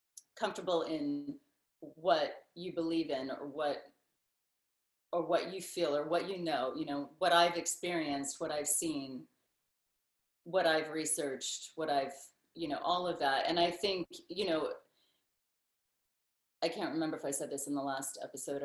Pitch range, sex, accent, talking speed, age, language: 145-200 Hz, female, American, 160 wpm, 40-59, English